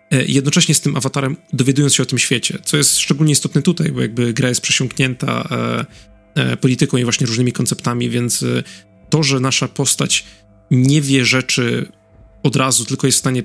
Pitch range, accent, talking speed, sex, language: 125-150 Hz, native, 180 wpm, male, Polish